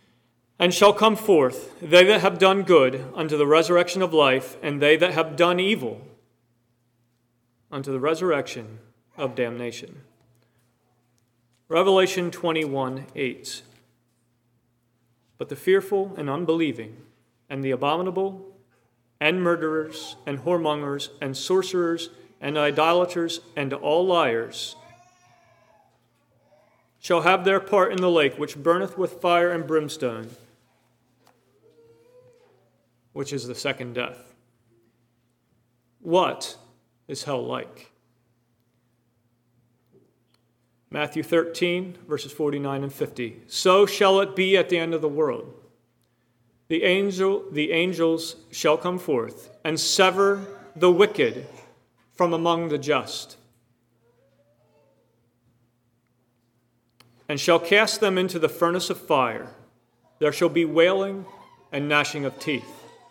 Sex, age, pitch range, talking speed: male, 40-59, 120-175 Hz, 110 wpm